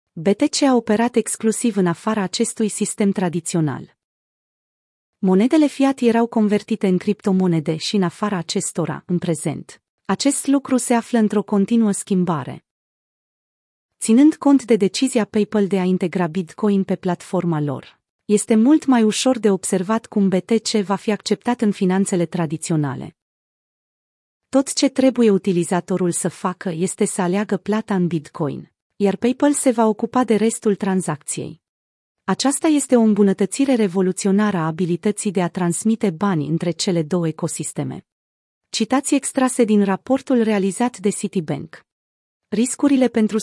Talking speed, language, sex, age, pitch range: 135 wpm, Romanian, female, 30-49, 180-230 Hz